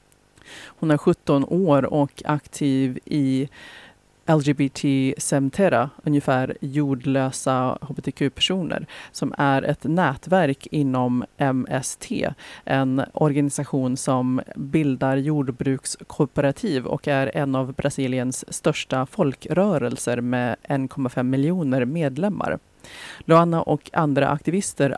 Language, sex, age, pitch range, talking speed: Swedish, female, 30-49, 135-155 Hz, 90 wpm